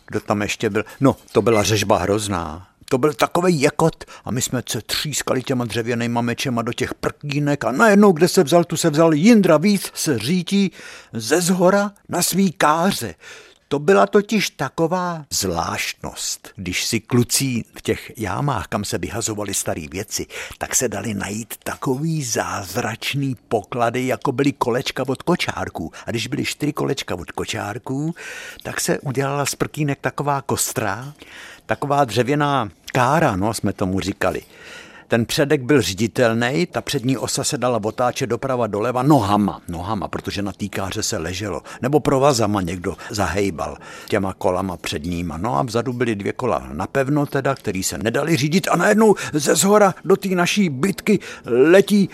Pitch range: 110-165 Hz